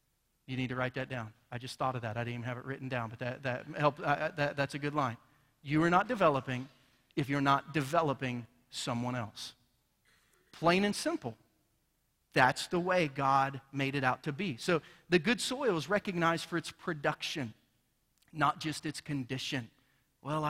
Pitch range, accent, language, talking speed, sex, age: 120-150 Hz, American, English, 185 wpm, male, 40-59